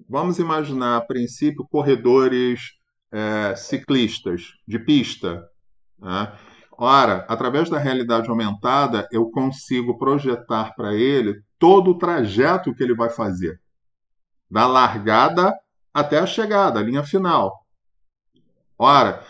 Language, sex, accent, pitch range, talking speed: Portuguese, male, Brazilian, 115-160 Hz, 110 wpm